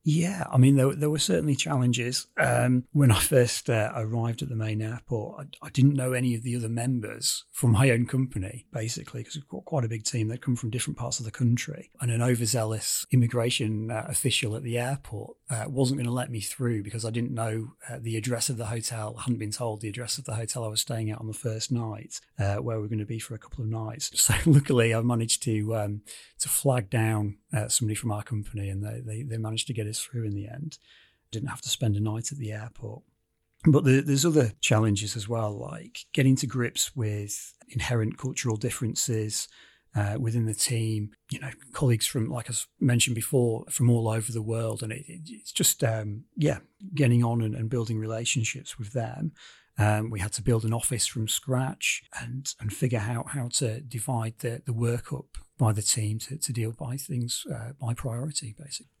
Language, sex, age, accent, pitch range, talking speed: English, male, 30-49, British, 110-130 Hz, 220 wpm